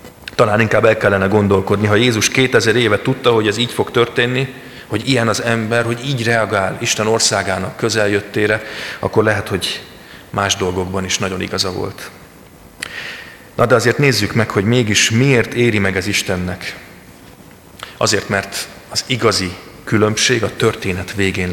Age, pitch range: 30-49, 95-115 Hz